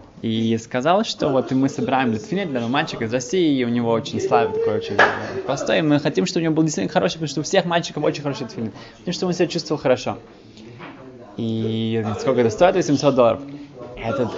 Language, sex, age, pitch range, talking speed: Russian, male, 20-39, 115-155 Hz, 210 wpm